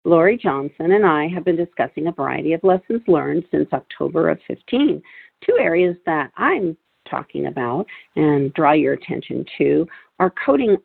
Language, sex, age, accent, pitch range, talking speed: English, female, 50-69, American, 160-215 Hz, 160 wpm